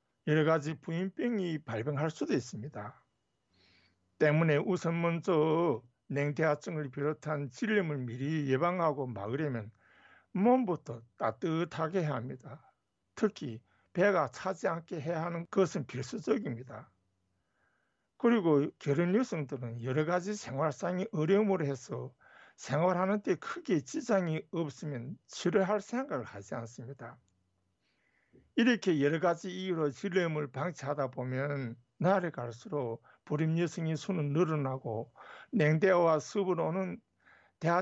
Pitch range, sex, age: 130-185 Hz, male, 60-79